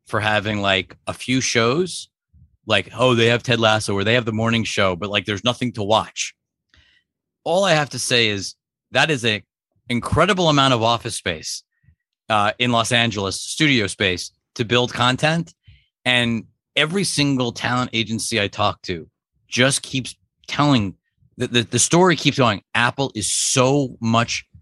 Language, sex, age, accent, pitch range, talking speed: English, male, 30-49, American, 105-130 Hz, 165 wpm